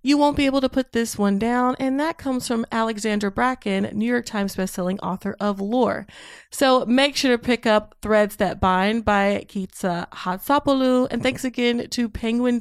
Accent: American